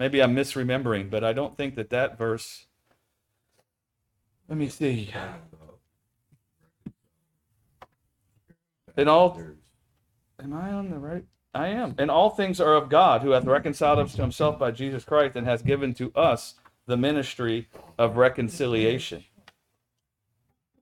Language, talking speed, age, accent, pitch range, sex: English, 135 wpm, 40-59, American, 110-145 Hz, male